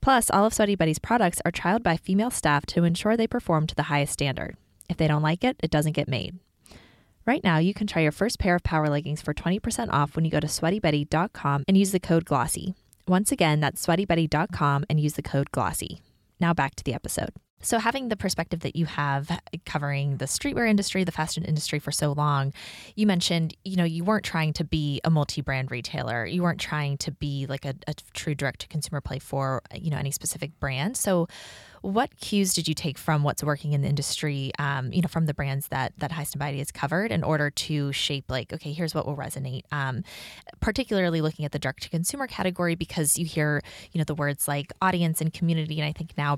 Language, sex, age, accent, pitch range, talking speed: English, female, 20-39, American, 145-175 Hz, 220 wpm